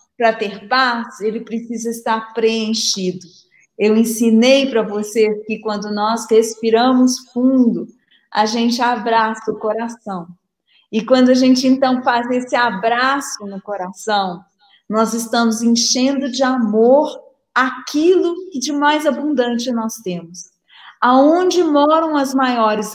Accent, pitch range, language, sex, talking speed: Brazilian, 215-290 Hz, Portuguese, female, 125 wpm